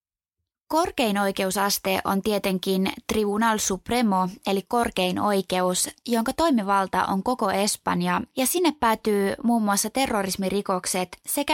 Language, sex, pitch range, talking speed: Finnish, female, 185-240 Hz, 110 wpm